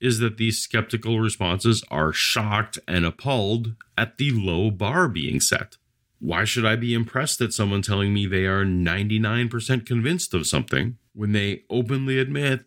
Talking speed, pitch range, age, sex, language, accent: 160 wpm, 105-130 Hz, 40-59, male, English, American